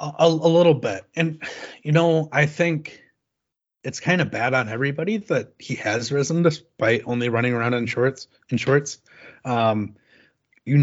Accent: American